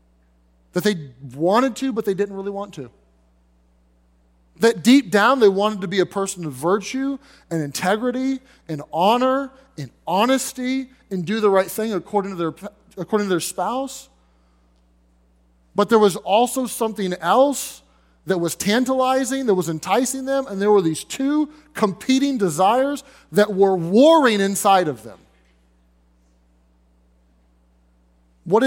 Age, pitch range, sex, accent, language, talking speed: 30-49, 150-245 Hz, male, American, English, 140 wpm